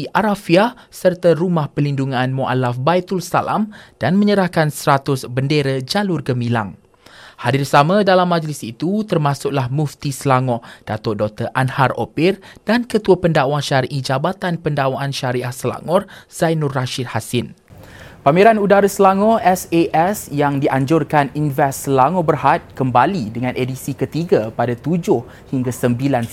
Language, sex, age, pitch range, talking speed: Malay, male, 20-39, 130-180 Hz, 120 wpm